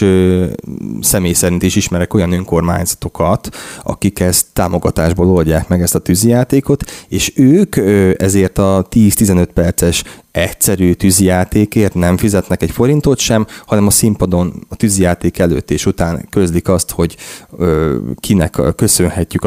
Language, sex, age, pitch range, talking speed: Hungarian, male, 20-39, 85-100 Hz, 125 wpm